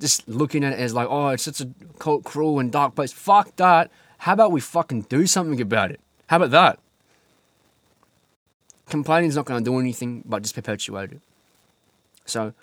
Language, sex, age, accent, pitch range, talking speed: English, male, 20-39, Australian, 115-155 Hz, 190 wpm